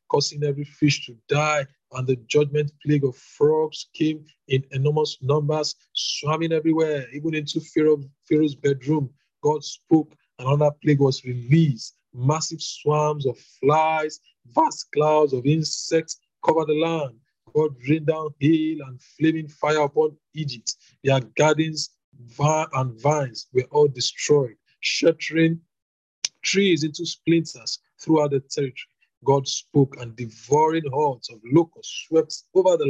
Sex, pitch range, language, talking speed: male, 135-160 Hz, English, 130 wpm